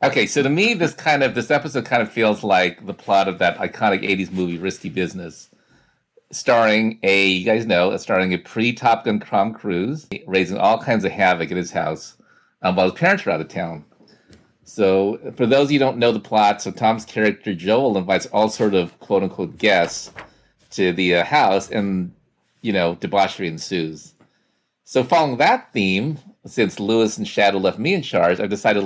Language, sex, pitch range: English, male, 90-115 Hz